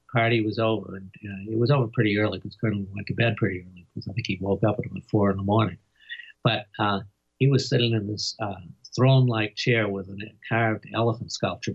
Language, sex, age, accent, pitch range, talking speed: English, male, 50-69, American, 100-120 Hz, 225 wpm